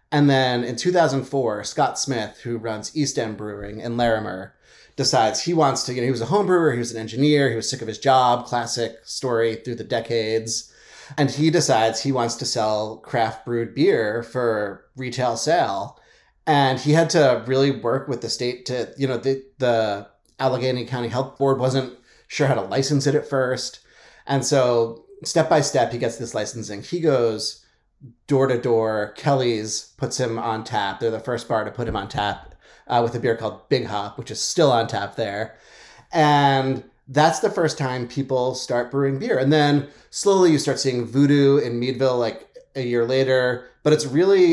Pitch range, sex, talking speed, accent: 115-145 Hz, male, 190 wpm, American